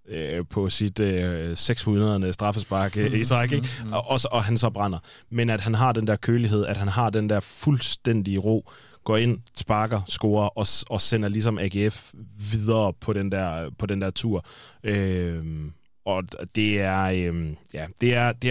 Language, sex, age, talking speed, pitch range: Danish, male, 20-39, 135 wpm, 100-115 Hz